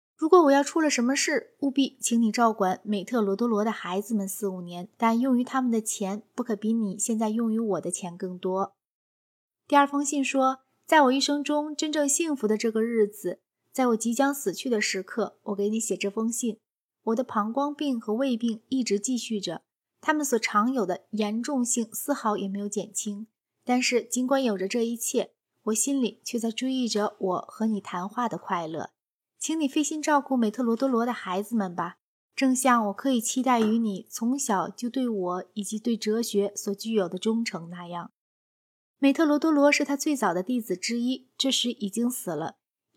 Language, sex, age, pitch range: Chinese, female, 20-39, 205-265 Hz